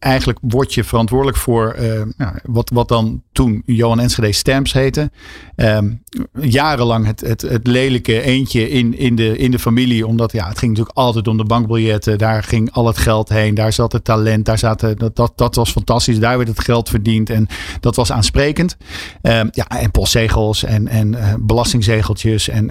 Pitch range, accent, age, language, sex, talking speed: 110-125 Hz, Dutch, 50-69, Dutch, male, 185 wpm